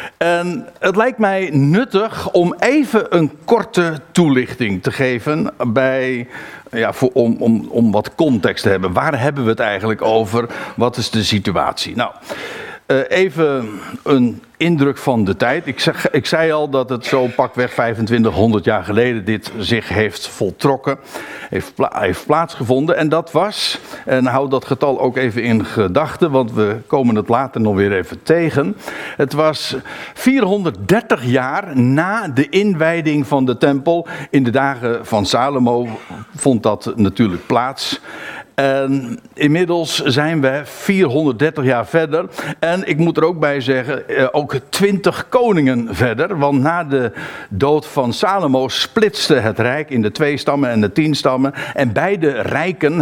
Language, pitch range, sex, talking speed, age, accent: Dutch, 120-160 Hz, male, 155 wpm, 60-79, Dutch